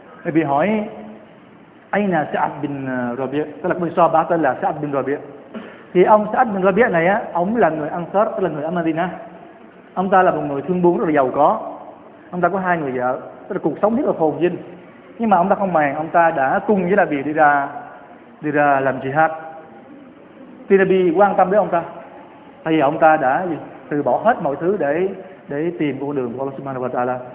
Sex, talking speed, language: male, 230 wpm, Vietnamese